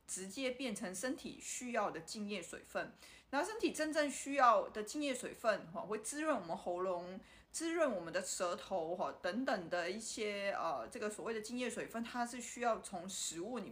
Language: Chinese